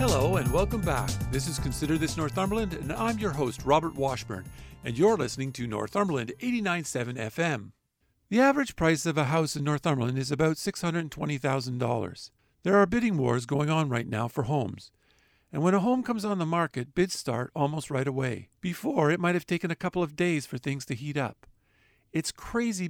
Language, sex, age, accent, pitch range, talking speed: English, male, 50-69, American, 135-180 Hz, 190 wpm